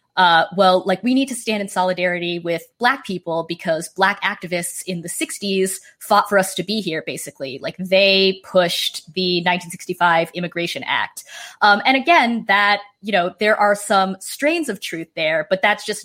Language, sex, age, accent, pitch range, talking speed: English, female, 20-39, American, 175-210 Hz, 180 wpm